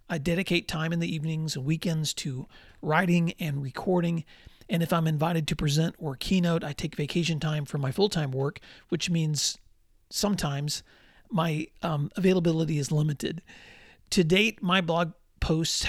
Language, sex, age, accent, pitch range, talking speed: English, male, 40-59, American, 150-180 Hz, 155 wpm